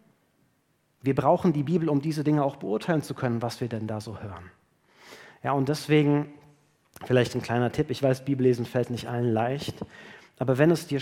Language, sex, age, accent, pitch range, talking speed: German, male, 40-59, German, 120-150 Hz, 190 wpm